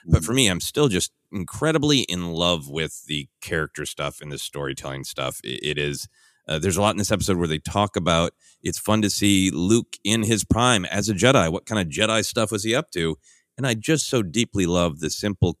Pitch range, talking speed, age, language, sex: 80-100 Hz, 225 wpm, 30-49, English, male